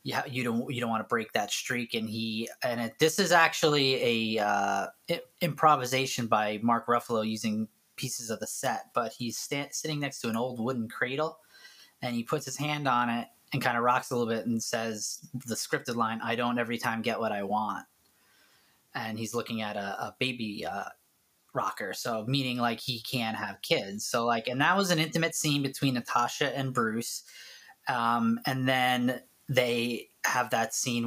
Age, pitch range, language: 20-39, 115-130 Hz, English